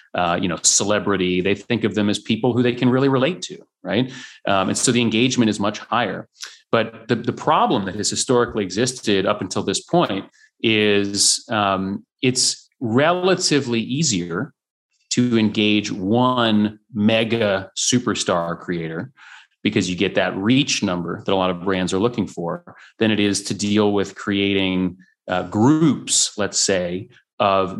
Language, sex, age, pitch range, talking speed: English, male, 30-49, 95-125 Hz, 160 wpm